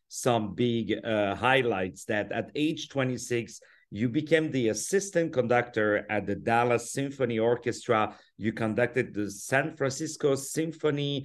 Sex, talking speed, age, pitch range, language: male, 130 wpm, 50-69, 110-140 Hz, English